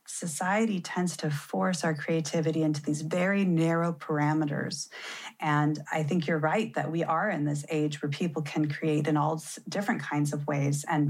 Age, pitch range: 30-49, 150-170 Hz